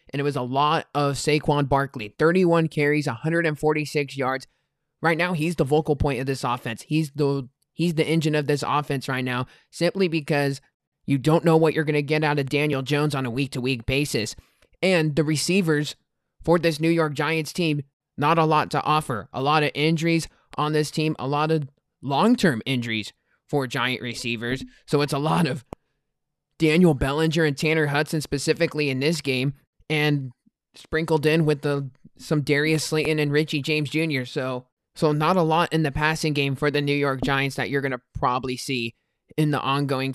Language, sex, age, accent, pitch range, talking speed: English, male, 20-39, American, 135-155 Hz, 190 wpm